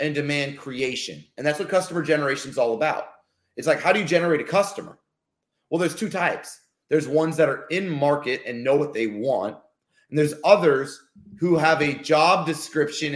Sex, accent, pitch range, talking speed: male, American, 135-185 Hz, 190 wpm